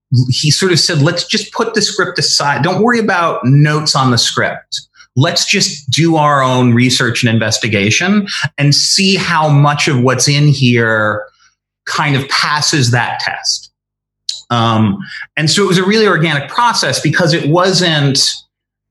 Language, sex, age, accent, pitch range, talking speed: English, male, 30-49, American, 115-155 Hz, 160 wpm